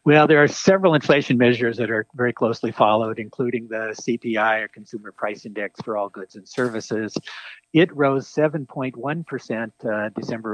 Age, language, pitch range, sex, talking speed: 60-79, English, 110-135 Hz, male, 155 wpm